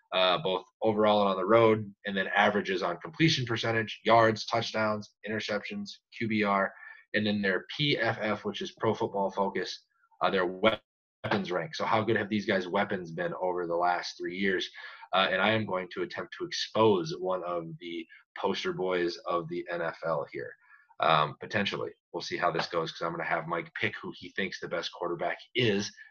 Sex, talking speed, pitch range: male, 190 wpm, 100-125 Hz